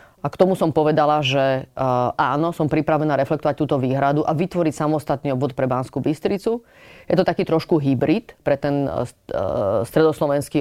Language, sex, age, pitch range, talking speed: Slovak, female, 30-49, 145-170 Hz, 155 wpm